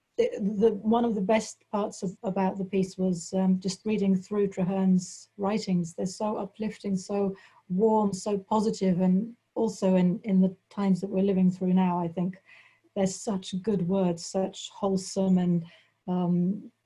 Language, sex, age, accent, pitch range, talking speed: English, female, 40-59, British, 185-210 Hz, 165 wpm